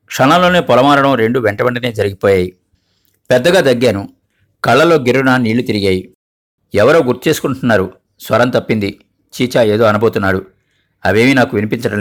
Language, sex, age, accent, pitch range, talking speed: Telugu, male, 50-69, native, 100-135 Hz, 115 wpm